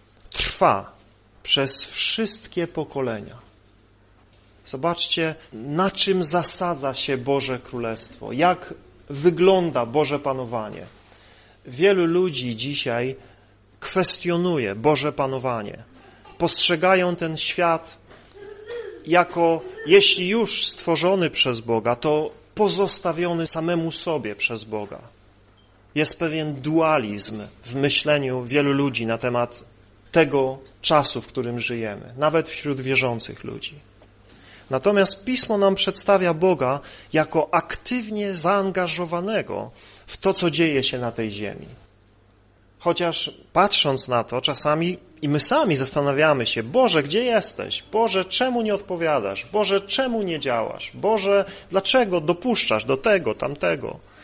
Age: 40-59